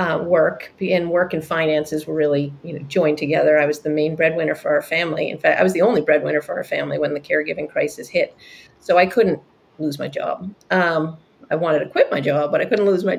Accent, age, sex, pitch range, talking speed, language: American, 30-49, female, 155-185 Hz, 240 wpm, English